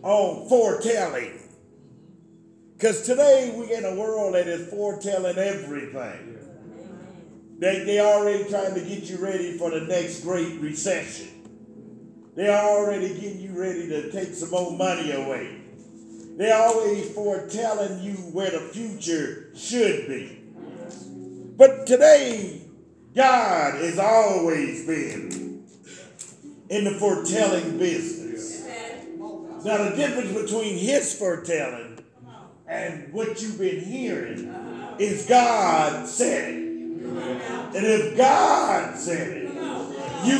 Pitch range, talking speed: 180-250 Hz, 110 wpm